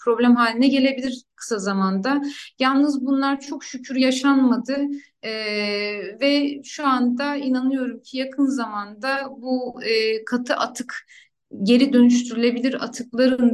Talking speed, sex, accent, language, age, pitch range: 110 wpm, female, native, Turkish, 30-49, 215-255 Hz